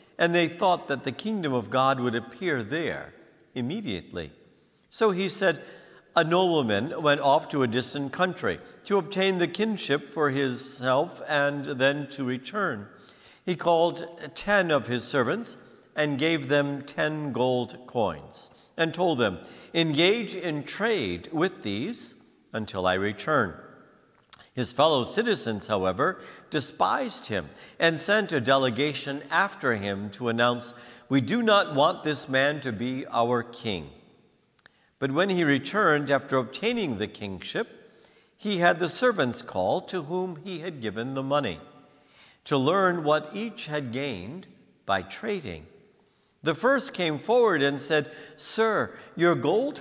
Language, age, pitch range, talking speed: English, 60-79, 135-185 Hz, 140 wpm